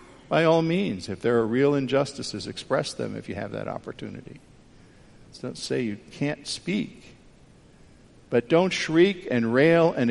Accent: American